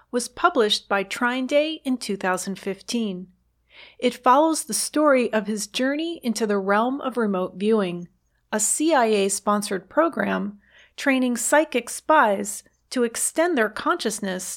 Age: 40-59